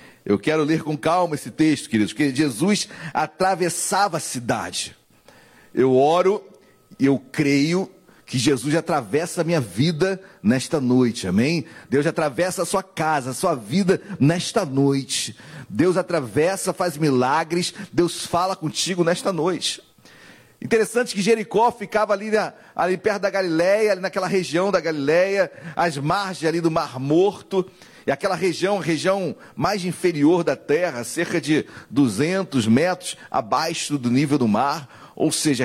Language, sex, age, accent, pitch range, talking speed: Portuguese, male, 40-59, Brazilian, 155-205 Hz, 145 wpm